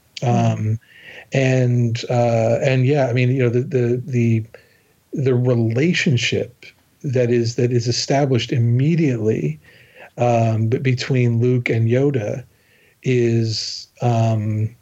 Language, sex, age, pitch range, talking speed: English, male, 40-59, 115-130 Hz, 110 wpm